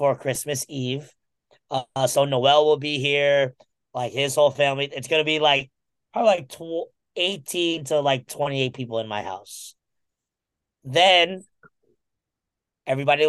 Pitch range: 125-155 Hz